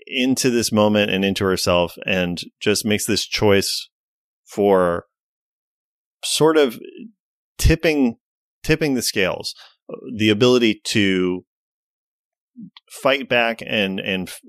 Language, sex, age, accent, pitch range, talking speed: English, male, 30-49, American, 90-115 Hz, 110 wpm